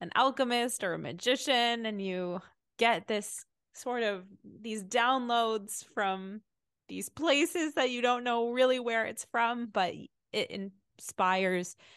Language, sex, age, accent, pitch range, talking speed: English, female, 20-39, American, 165-205 Hz, 135 wpm